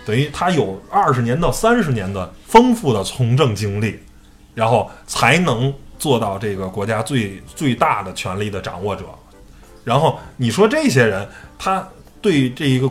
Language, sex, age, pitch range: Chinese, male, 20-39, 110-175 Hz